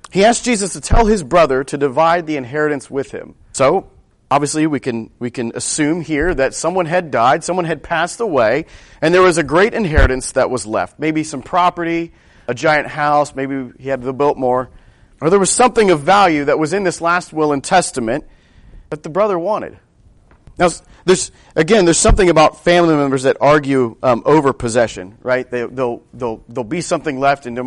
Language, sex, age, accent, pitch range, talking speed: English, male, 40-59, American, 125-165 Hz, 195 wpm